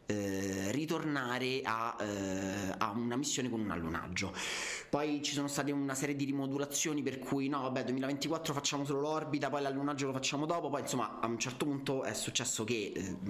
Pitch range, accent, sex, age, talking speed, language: 105-135 Hz, native, male, 30-49, 175 wpm, Italian